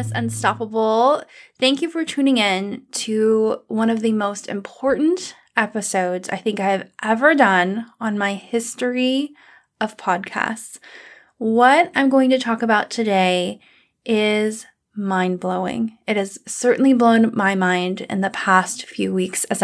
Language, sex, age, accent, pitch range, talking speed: English, female, 20-39, American, 195-250 Hz, 135 wpm